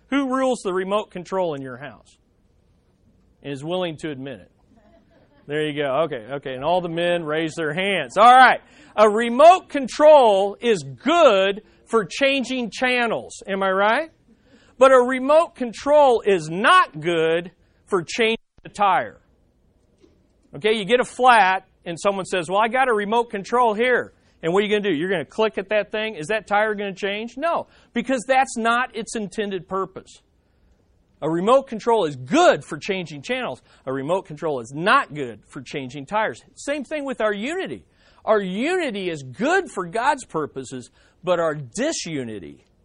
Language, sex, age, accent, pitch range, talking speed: English, male, 40-59, American, 155-245 Hz, 175 wpm